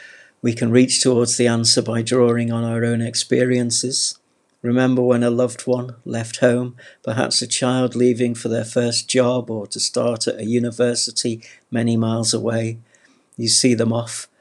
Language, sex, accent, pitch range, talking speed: English, male, British, 115-125 Hz, 165 wpm